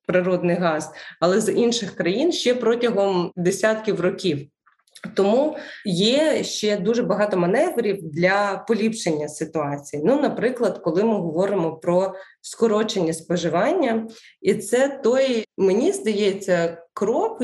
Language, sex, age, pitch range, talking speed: Ukrainian, female, 20-39, 180-225 Hz, 115 wpm